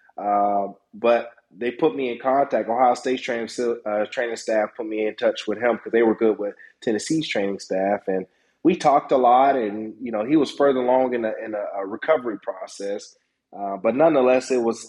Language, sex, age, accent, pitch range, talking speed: English, male, 30-49, American, 115-145 Hz, 200 wpm